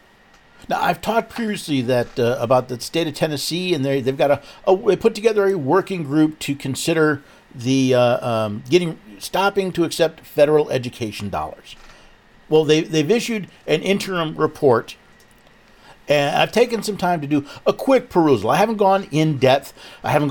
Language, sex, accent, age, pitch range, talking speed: English, male, American, 50-69, 130-175 Hz, 175 wpm